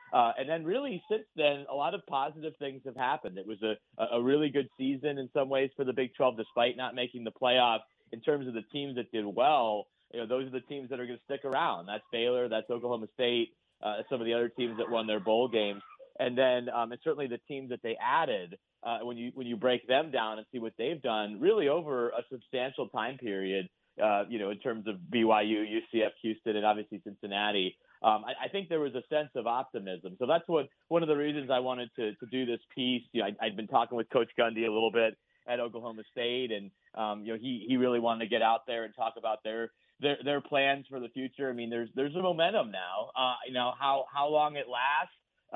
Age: 30-49